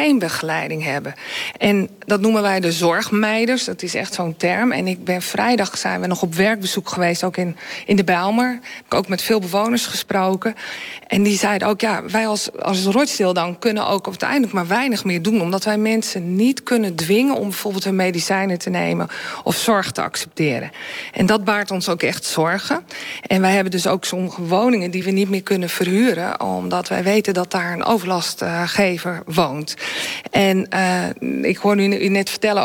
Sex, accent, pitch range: female, Dutch, 185-220 Hz